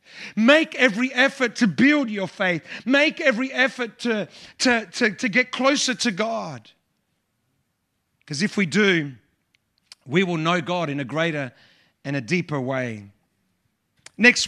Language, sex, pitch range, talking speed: English, male, 175-225 Hz, 135 wpm